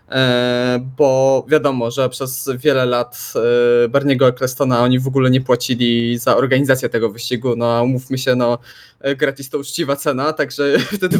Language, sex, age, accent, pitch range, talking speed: Polish, male, 20-39, native, 130-155 Hz, 145 wpm